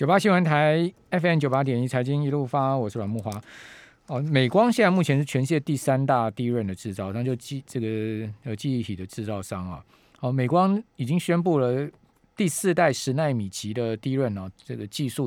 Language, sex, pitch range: Chinese, male, 110-150 Hz